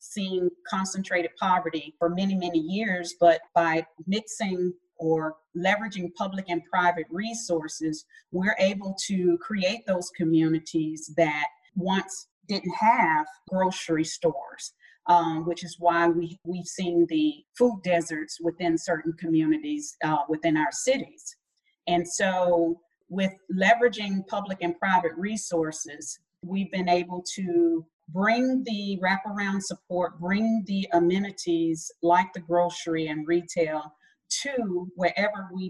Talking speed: 120 wpm